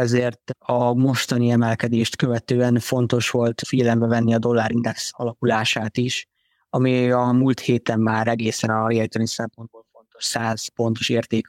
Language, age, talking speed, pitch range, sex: Hungarian, 20-39, 135 wpm, 115-125 Hz, male